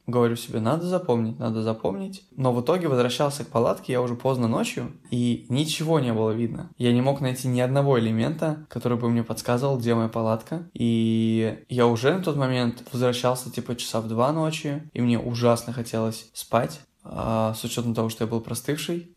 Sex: male